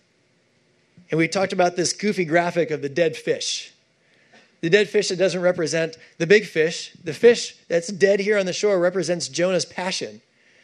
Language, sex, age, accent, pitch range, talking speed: English, male, 20-39, American, 155-200 Hz, 175 wpm